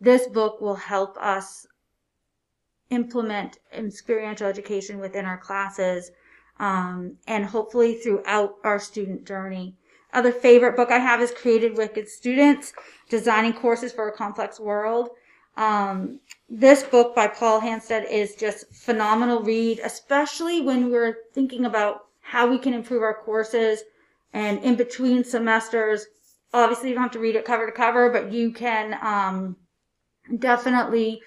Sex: female